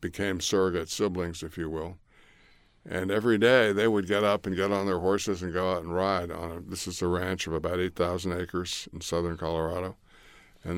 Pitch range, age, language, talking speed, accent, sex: 85-95 Hz, 60-79, English, 200 wpm, American, male